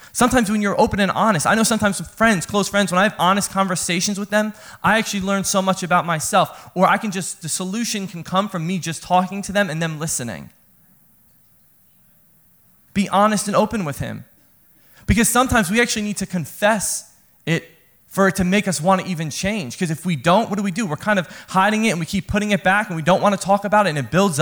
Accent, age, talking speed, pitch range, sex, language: American, 20-39, 240 wpm, 150-195 Hz, male, English